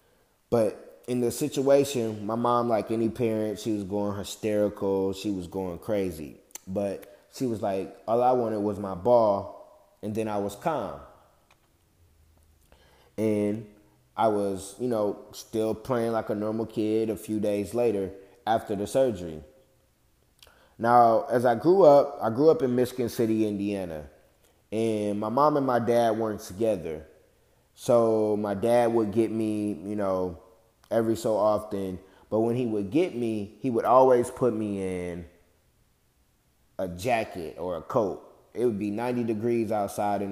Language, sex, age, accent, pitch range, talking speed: English, male, 20-39, American, 100-120 Hz, 155 wpm